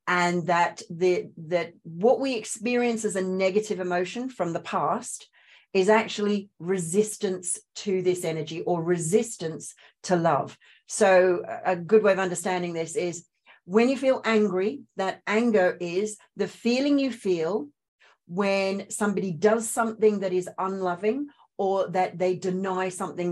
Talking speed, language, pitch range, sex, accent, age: 140 wpm, English, 170-215 Hz, female, Australian, 40-59